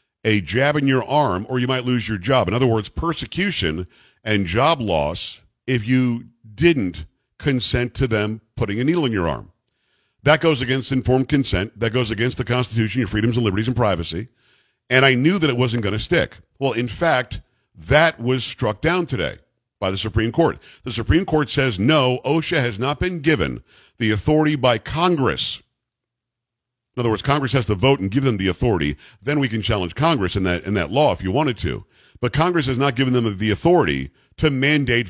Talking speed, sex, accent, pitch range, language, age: 200 wpm, male, American, 110-140 Hz, English, 50-69